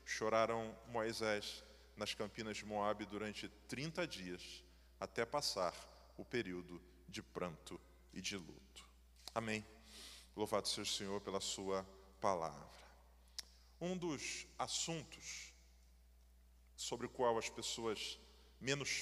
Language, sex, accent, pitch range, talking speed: Portuguese, male, Brazilian, 90-145 Hz, 110 wpm